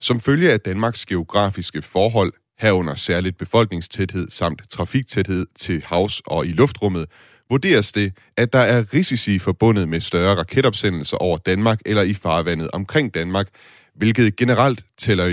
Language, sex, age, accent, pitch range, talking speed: Danish, male, 30-49, native, 85-110 Hz, 140 wpm